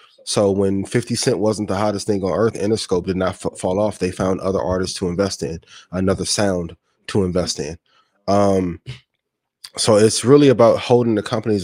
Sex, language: male, English